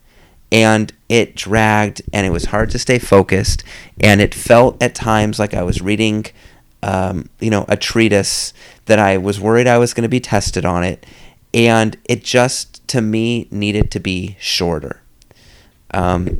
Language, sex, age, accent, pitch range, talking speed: English, male, 30-49, American, 95-115 Hz, 170 wpm